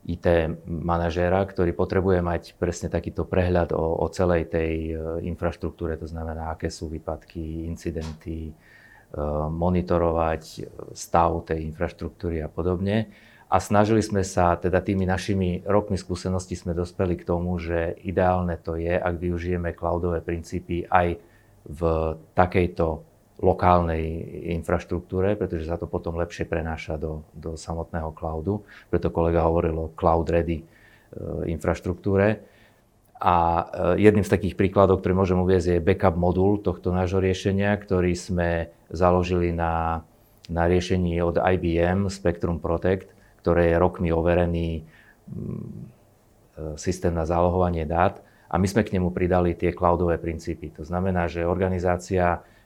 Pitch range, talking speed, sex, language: 85-95 Hz, 135 wpm, male, Slovak